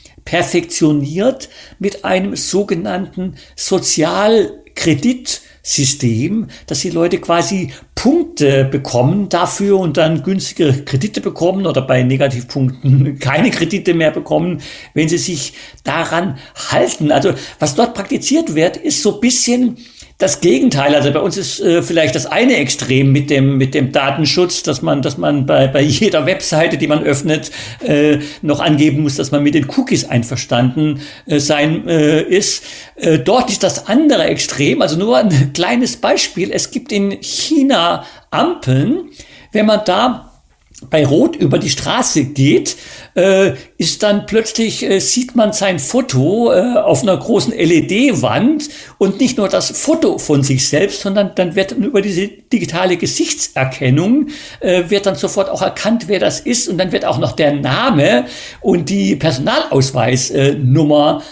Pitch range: 145-205 Hz